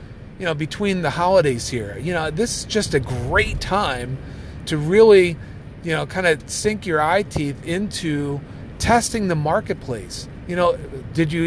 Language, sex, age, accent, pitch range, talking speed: English, male, 40-59, American, 135-175 Hz, 165 wpm